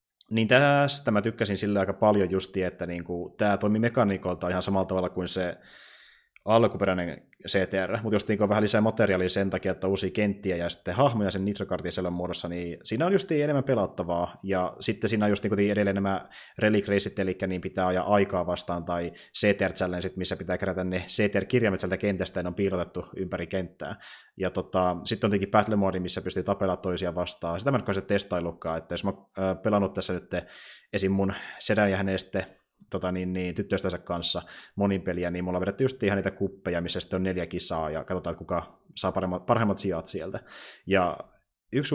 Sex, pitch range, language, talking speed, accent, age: male, 90-105 Hz, Finnish, 185 wpm, native, 20-39